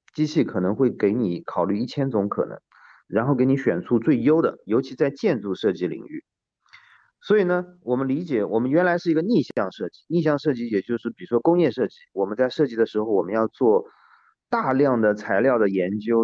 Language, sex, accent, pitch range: Chinese, male, native, 110-185 Hz